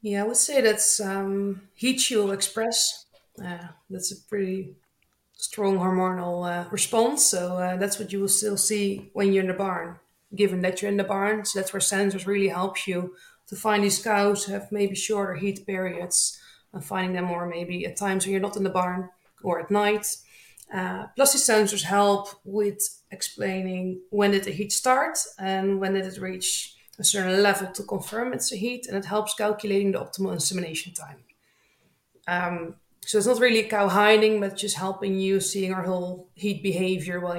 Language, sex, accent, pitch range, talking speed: English, female, Dutch, 190-210 Hz, 190 wpm